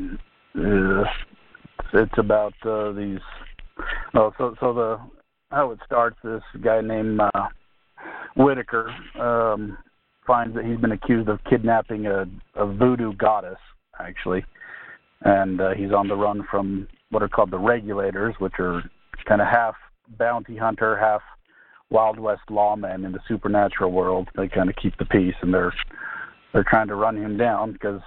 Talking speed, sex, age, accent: 150 wpm, male, 40-59, American